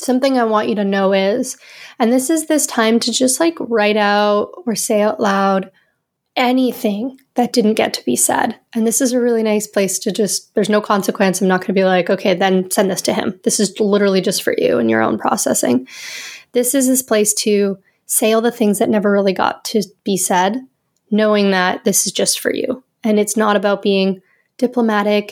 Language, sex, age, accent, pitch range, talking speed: English, female, 20-39, American, 195-250 Hz, 215 wpm